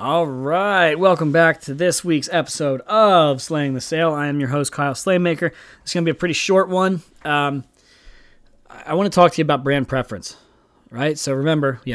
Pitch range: 125-155 Hz